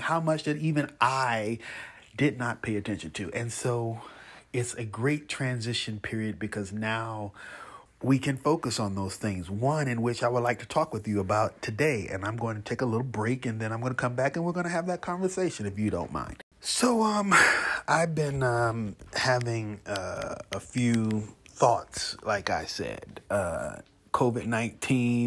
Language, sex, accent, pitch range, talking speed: English, male, American, 105-130 Hz, 185 wpm